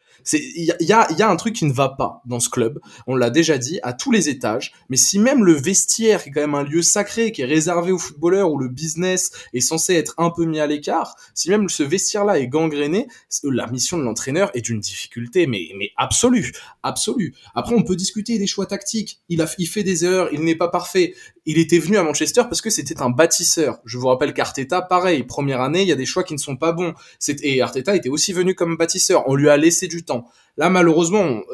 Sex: male